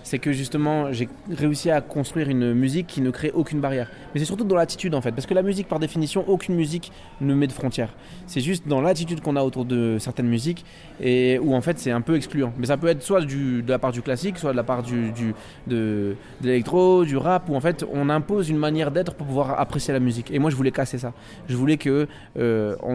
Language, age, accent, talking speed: French, 20-39, French, 250 wpm